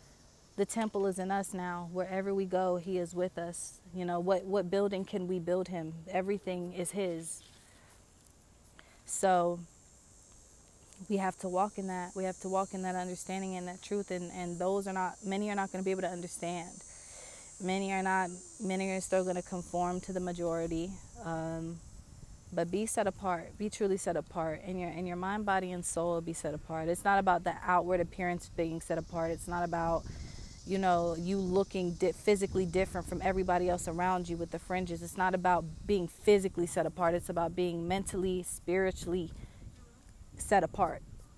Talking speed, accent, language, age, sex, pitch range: 185 wpm, American, English, 20-39, female, 170-195 Hz